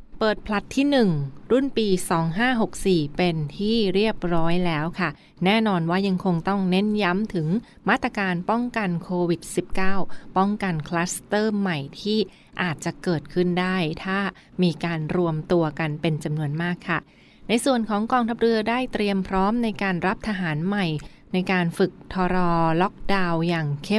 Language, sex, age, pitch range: Thai, female, 20-39, 170-200 Hz